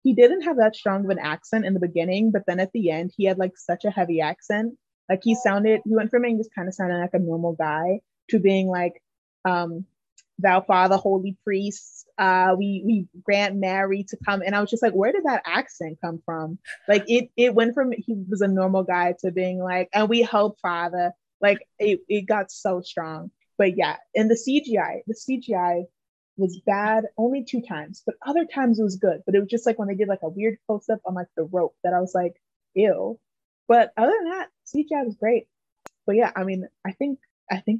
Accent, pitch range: American, 180-220 Hz